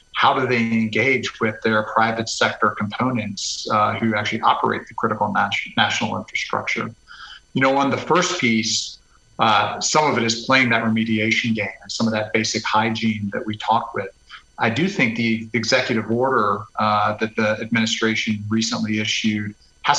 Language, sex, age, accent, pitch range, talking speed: English, male, 40-59, American, 105-115 Hz, 170 wpm